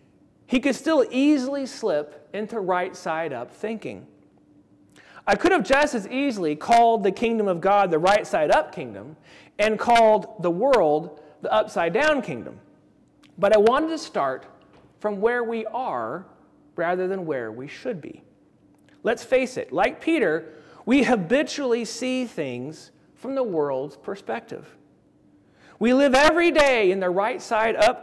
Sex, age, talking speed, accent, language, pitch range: male, 40-59, 135 wpm, American, English, 180-255 Hz